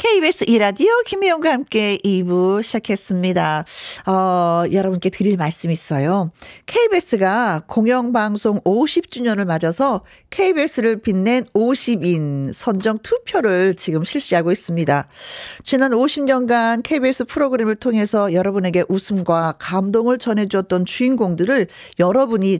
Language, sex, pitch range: Korean, female, 185-280 Hz